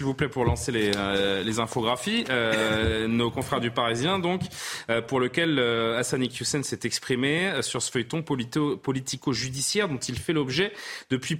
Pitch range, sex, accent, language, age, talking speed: 125-175 Hz, male, French, French, 30-49, 180 wpm